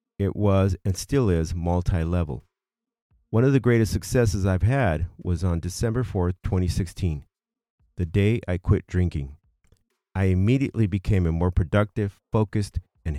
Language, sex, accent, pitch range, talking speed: English, male, American, 85-110 Hz, 140 wpm